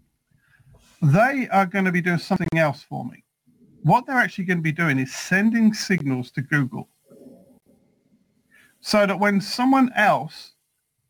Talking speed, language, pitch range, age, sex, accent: 145 wpm, English, 145-200 Hz, 50-69, male, British